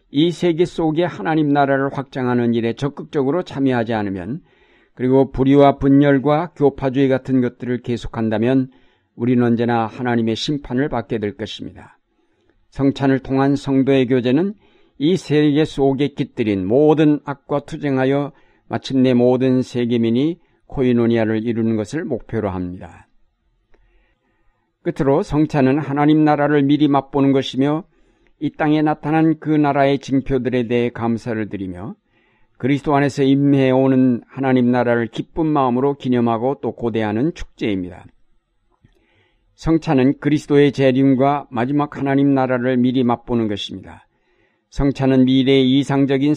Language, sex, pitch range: Korean, male, 120-145 Hz